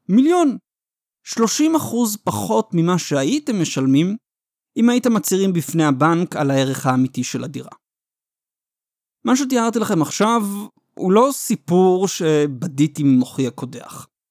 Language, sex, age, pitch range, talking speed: Hebrew, male, 30-49, 145-220 Hz, 110 wpm